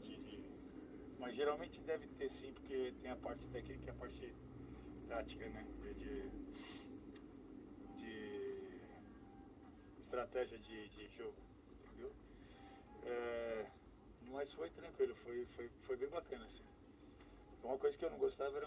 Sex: male